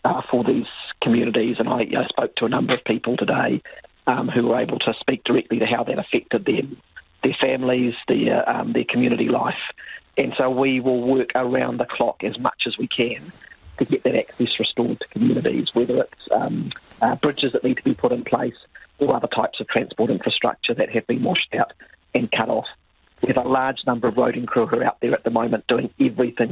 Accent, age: British, 40-59